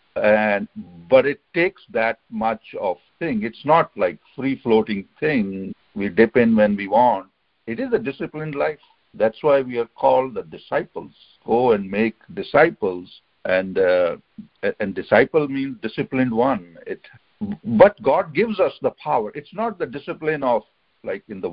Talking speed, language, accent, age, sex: 160 wpm, English, Indian, 60-79, male